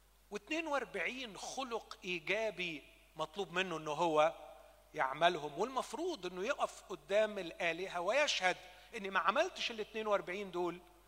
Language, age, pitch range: Arabic, 40-59, 155-225 Hz